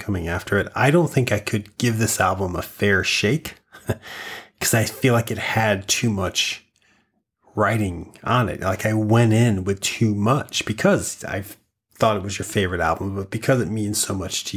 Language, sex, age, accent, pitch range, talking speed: English, male, 30-49, American, 100-120 Hz, 195 wpm